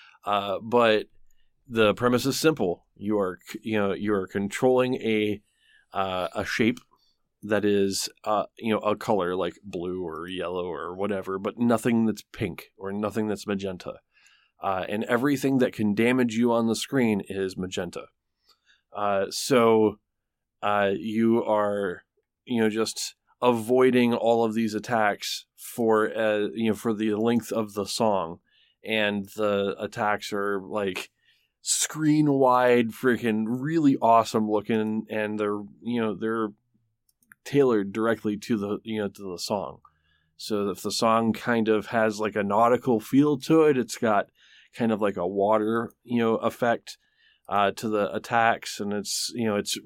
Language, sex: English, male